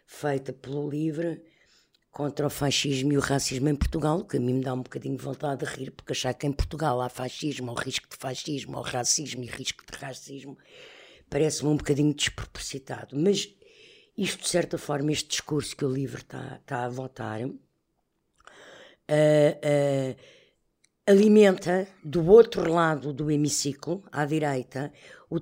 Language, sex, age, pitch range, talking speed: Portuguese, female, 60-79, 140-190 Hz, 160 wpm